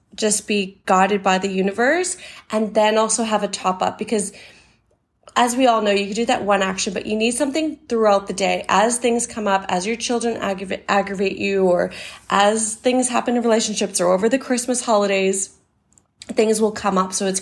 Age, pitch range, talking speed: 20-39, 195-245 Hz, 195 wpm